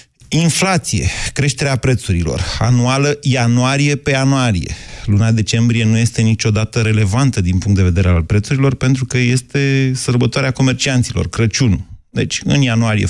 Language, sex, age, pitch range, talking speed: Romanian, male, 30-49, 100-125 Hz, 130 wpm